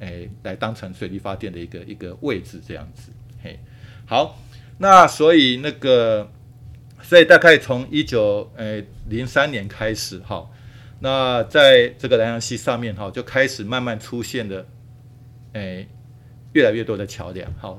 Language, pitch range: Chinese, 105-125 Hz